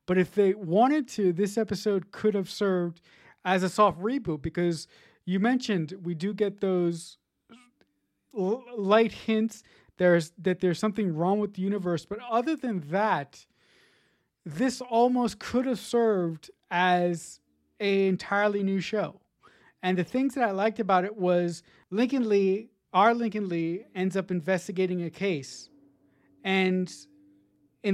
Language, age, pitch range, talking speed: English, 30-49, 180-225 Hz, 140 wpm